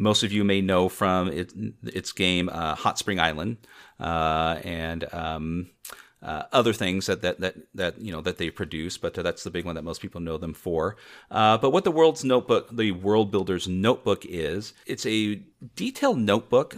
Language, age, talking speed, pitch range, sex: English, 40-59, 190 wpm, 85-110 Hz, male